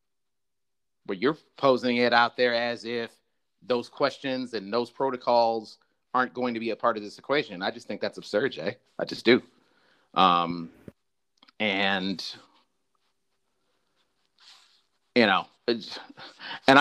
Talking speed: 130 wpm